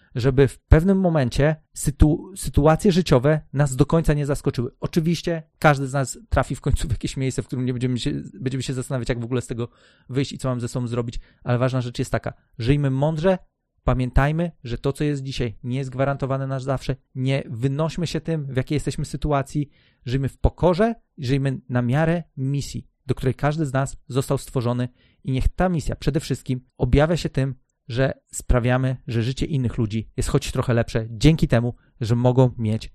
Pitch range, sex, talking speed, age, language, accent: 125-150 Hz, male, 195 wpm, 30-49, Polish, native